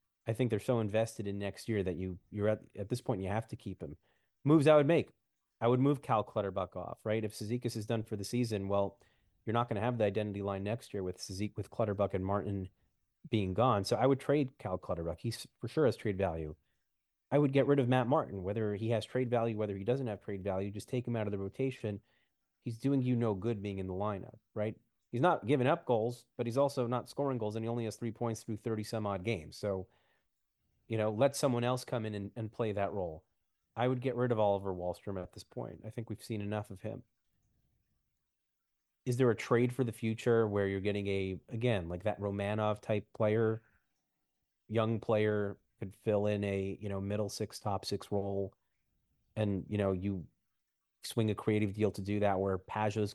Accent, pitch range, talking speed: American, 100-120 Hz, 225 wpm